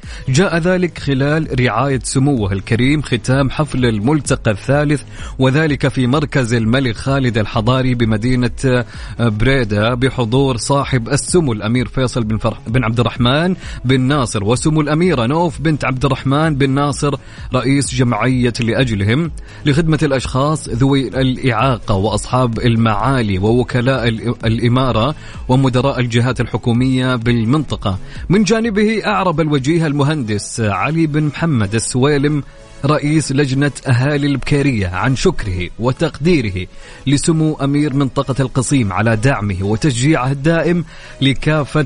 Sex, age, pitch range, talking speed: male, 30-49, 120-145 Hz, 110 wpm